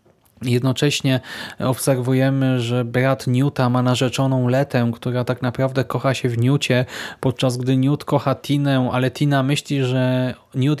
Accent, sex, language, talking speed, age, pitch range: native, male, Polish, 140 wpm, 20-39, 125-145 Hz